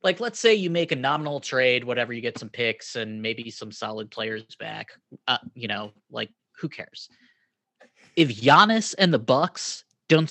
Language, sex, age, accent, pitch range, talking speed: English, male, 20-39, American, 115-155 Hz, 180 wpm